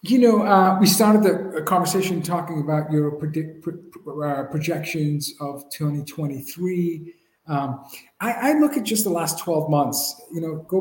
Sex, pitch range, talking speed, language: male, 155-200 Hz, 145 wpm, English